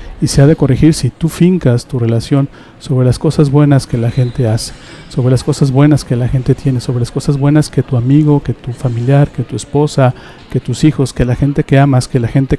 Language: Spanish